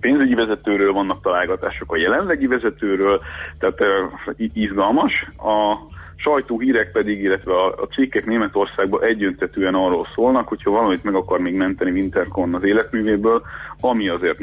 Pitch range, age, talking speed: 95-140 Hz, 30-49, 130 wpm